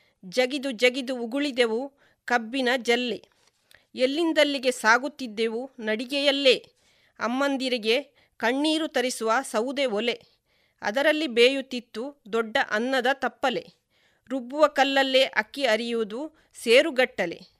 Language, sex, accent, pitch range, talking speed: Kannada, female, native, 230-275 Hz, 80 wpm